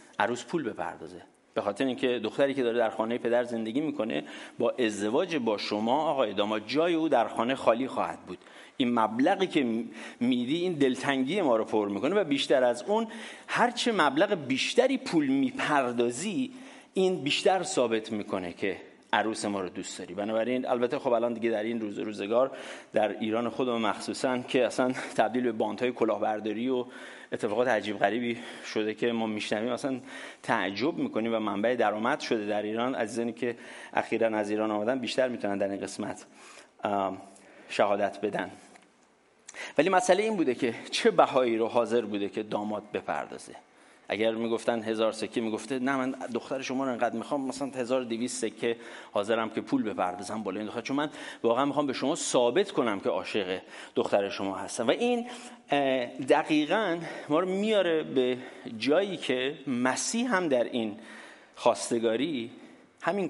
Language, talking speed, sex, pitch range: English, 160 wpm, male, 110-150 Hz